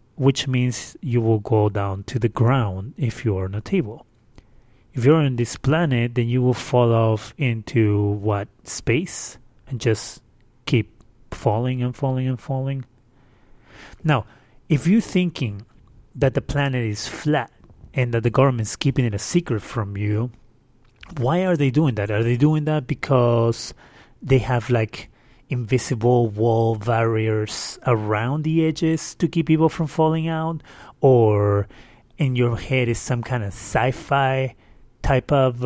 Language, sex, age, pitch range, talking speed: English, male, 30-49, 110-135 Hz, 150 wpm